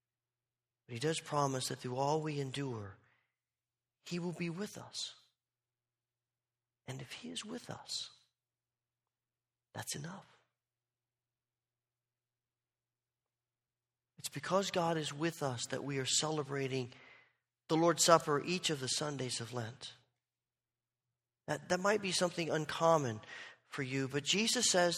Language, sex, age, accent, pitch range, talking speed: English, male, 40-59, American, 120-175 Hz, 125 wpm